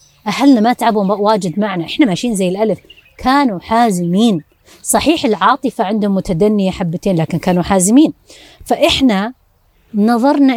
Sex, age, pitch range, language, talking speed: female, 30-49, 195-270 Hz, Arabic, 120 wpm